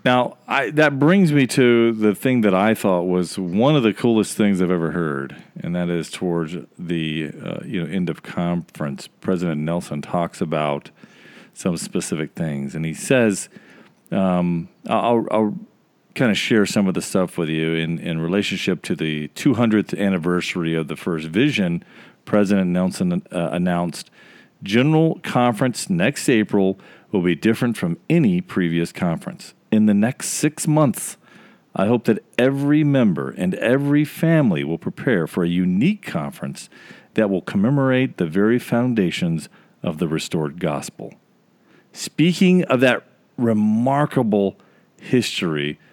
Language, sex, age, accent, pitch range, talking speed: English, male, 40-59, American, 90-140 Hz, 150 wpm